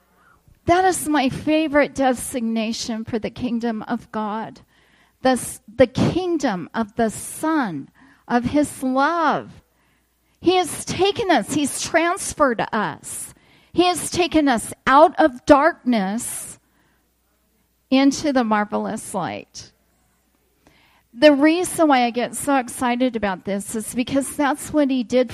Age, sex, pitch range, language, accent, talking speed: 40-59, female, 235-300 Hz, English, American, 120 wpm